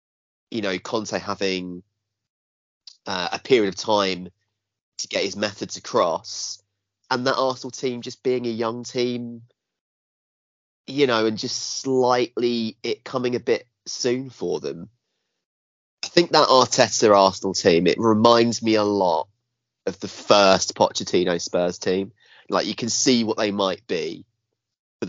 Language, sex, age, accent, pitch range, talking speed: English, male, 30-49, British, 90-115 Hz, 145 wpm